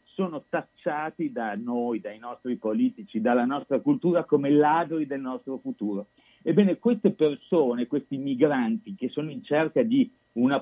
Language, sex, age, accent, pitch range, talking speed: Italian, male, 50-69, native, 120-190 Hz, 145 wpm